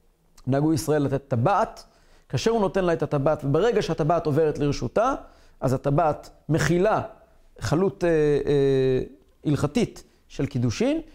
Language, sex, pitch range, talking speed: Hebrew, male, 135-200 Hz, 125 wpm